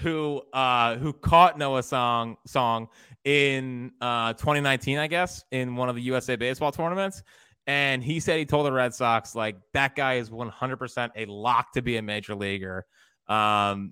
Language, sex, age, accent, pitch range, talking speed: English, male, 20-39, American, 120-185 Hz, 170 wpm